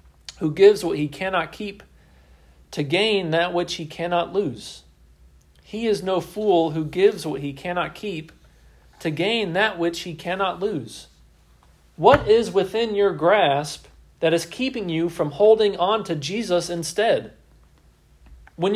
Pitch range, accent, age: 130-180 Hz, American, 40-59